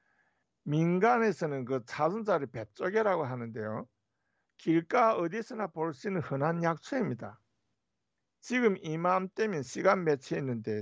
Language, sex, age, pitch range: Korean, male, 60-79, 120-185 Hz